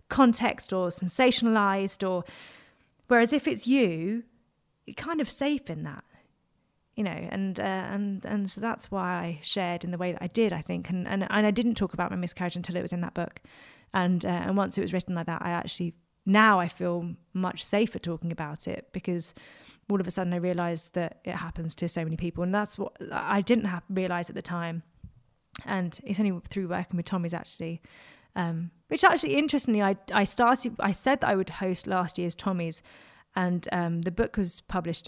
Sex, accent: female, British